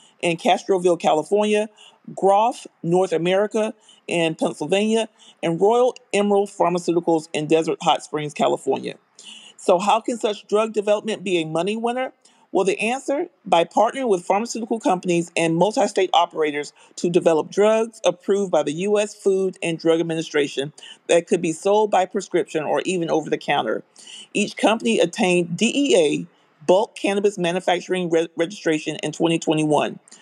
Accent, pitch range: American, 170-215 Hz